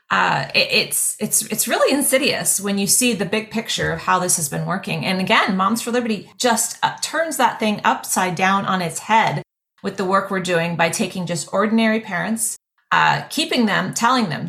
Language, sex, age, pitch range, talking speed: English, female, 30-49, 170-215 Hz, 195 wpm